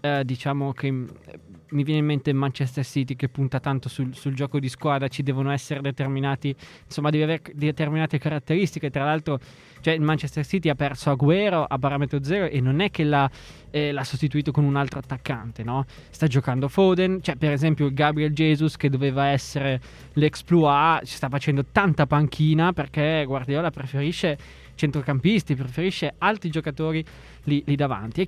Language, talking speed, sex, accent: Italian, 170 wpm, male, native